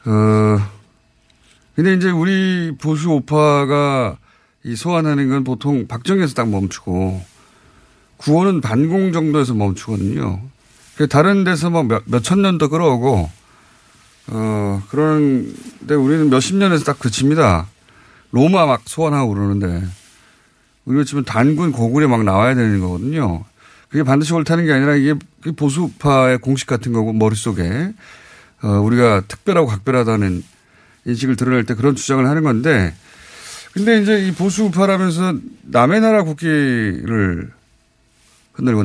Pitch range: 110-160 Hz